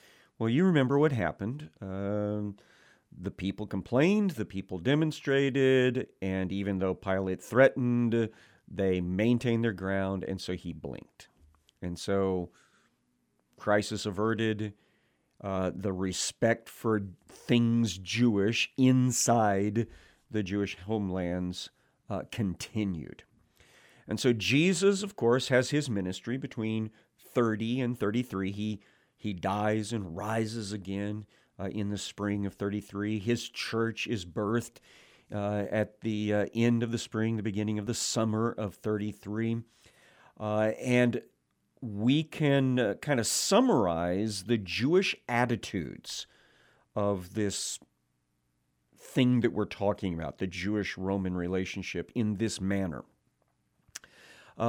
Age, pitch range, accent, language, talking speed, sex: 50-69, 95-120 Hz, American, English, 120 wpm, male